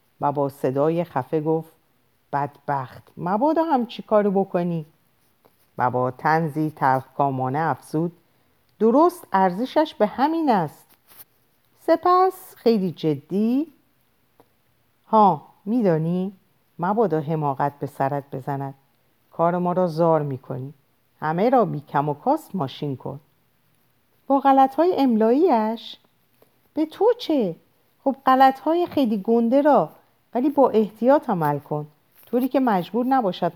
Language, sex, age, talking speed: Persian, female, 50-69, 115 wpm